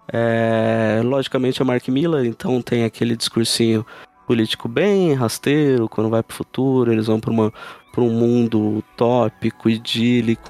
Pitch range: 115-130 Hz